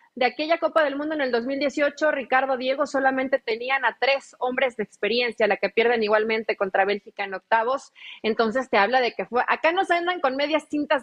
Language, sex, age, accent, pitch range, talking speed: Spanish, female, 30-49, Mexican, 215-280 Hz, 200 wpm